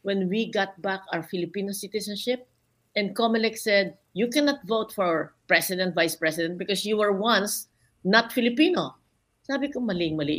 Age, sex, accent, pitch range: 50-69, female, native, 175-245 Hz